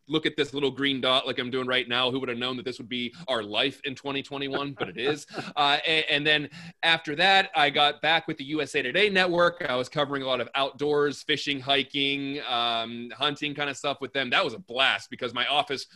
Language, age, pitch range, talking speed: English, 20-39, 125-150 Hz, 235 wpm